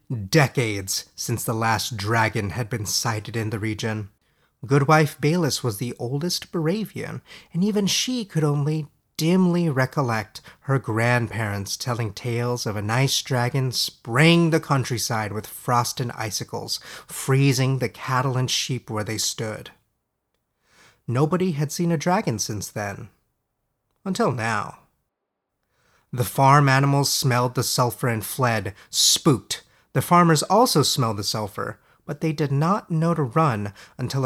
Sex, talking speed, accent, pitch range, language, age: male, 140 wpm, American, 115-150 Hz, English, 30-49